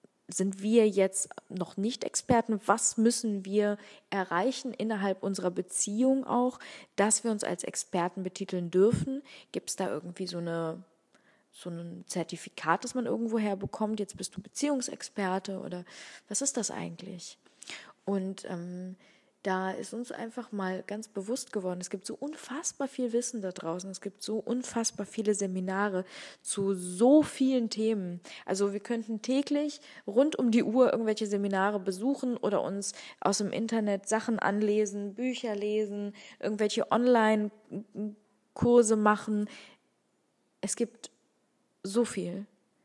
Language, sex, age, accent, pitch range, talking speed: German, female, 20-39, German, 190-235 Hz, 135 wpm